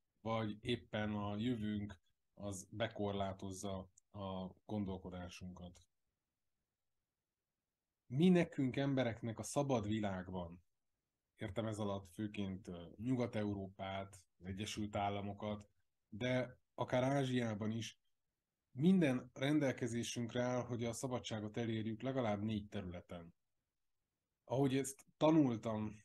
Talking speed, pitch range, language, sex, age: 90 wpm, 100-125 Hz, Hungarian, male, 20-39